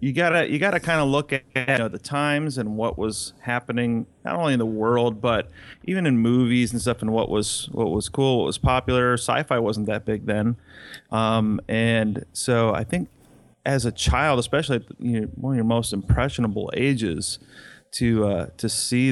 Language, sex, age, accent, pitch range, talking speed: English, male, 30-49, American, 110-135 Hz, 195 wpm